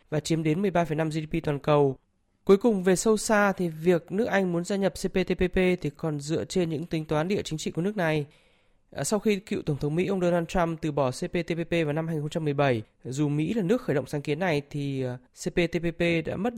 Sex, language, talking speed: male, Vietnamese, 220 wpm